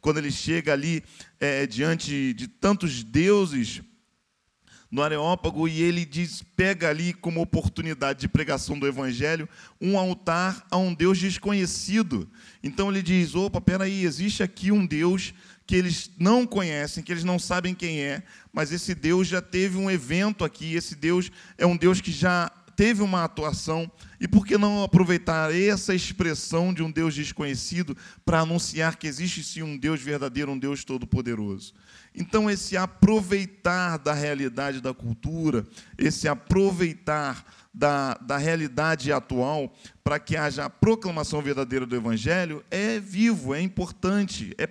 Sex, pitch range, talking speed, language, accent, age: male, 150-190 Hz, 150 wpm, Portuguese, Brazilian, 40-59